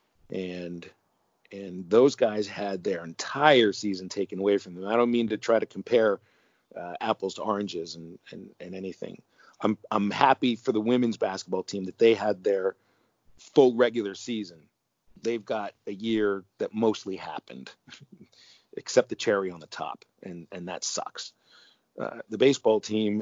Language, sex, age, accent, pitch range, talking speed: English, male, 40-59, American, 90-110 Hz, 165 wpm